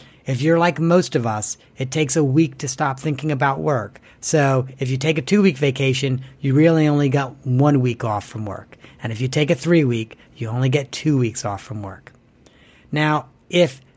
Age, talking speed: 40-59, 200 wpm